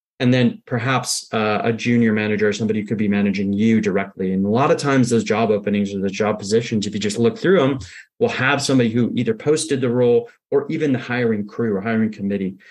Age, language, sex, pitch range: 30-49, English, male, 105-130 Hz